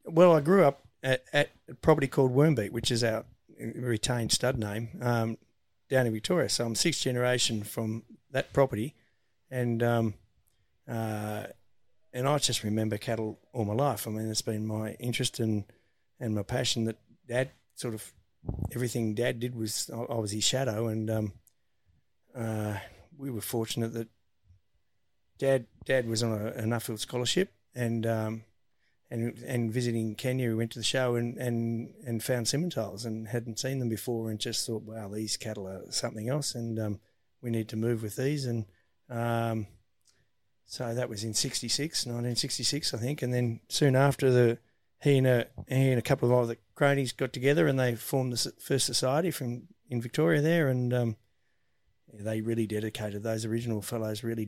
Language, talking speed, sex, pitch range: English, 175 wpm, male, 110-125 Hz